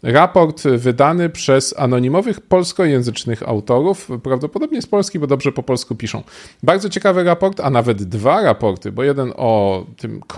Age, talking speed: 40-59, 145 wpm